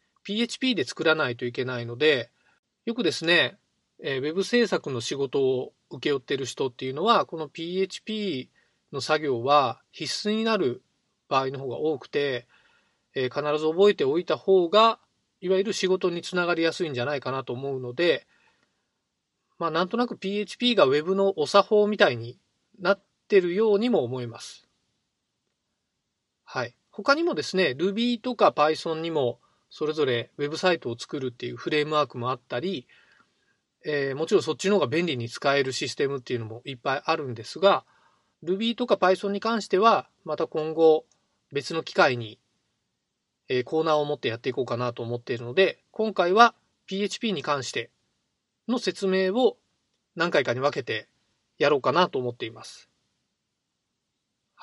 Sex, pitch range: male, 140-205 Hz